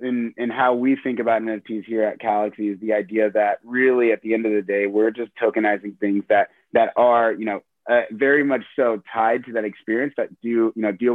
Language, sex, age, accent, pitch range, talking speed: English, male, 30-49, American, 105-120 Hz, 225 wpm